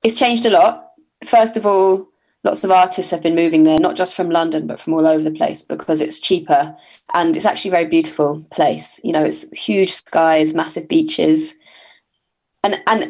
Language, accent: English, British